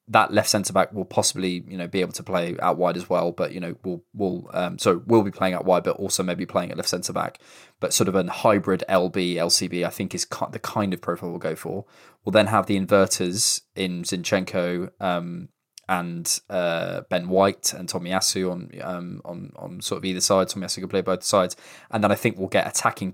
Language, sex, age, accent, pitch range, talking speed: English, male, 20-39, British, 90-105 Hz, 235 wpm